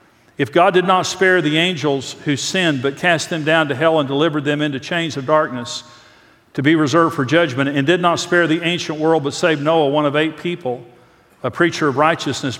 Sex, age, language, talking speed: male, 50-69, English, 215 wpm